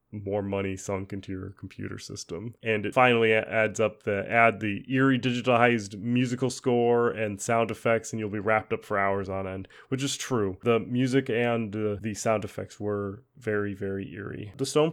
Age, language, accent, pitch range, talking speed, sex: 30-49, English, American, 105-125 Hz, 190 wpm, male